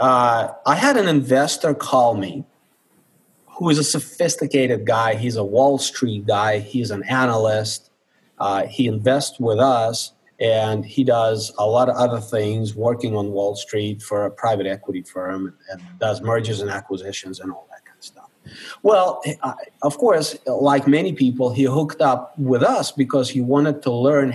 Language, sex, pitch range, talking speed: English, male, 110-140 Hz, 170 wpm